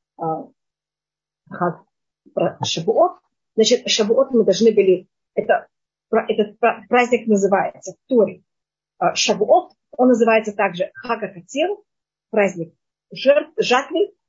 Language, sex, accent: Russian, female, native